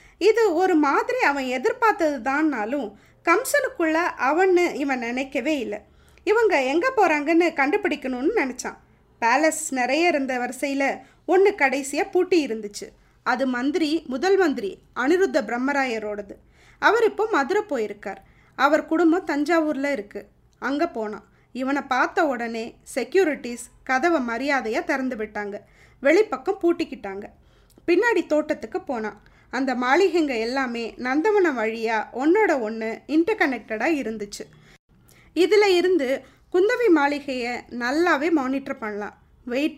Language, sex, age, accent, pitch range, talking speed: Tamil, female, 20-39, native, 245-345 Hz, 105 wpm